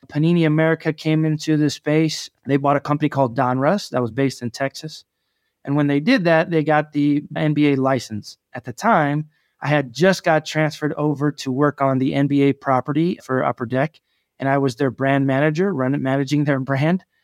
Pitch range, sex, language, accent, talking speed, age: 135-155 Hz, male, English, American, 190 wpm, 20-39